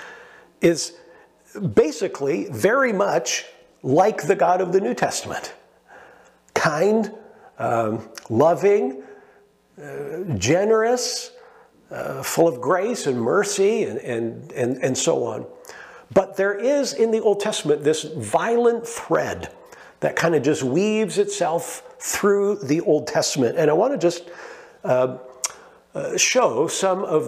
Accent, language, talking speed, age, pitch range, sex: American, English, 120 wpm, 50-69, 130-205 Hz, male